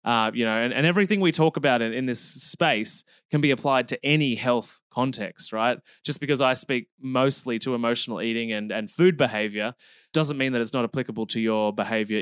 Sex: male